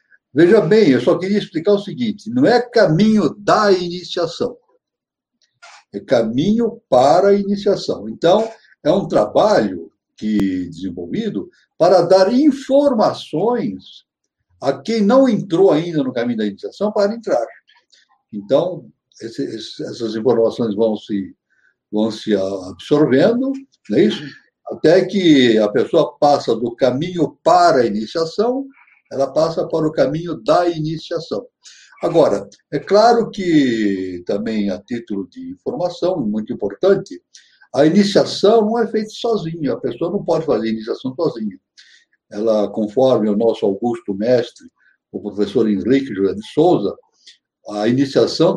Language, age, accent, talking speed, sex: Portuguese, 60-79, Brazilian, 125 wpm, male